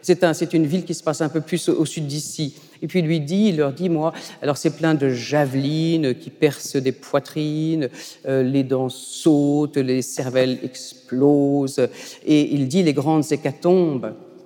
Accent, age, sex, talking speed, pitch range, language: French, 40-59, female, 190 wpm, 140-170 Hz, French